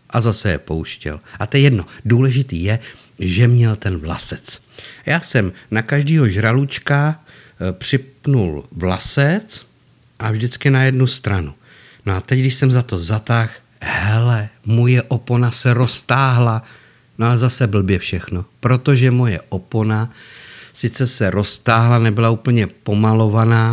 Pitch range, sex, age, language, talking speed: 105-125 Hz, male, 50-69, Czech, 135 wpm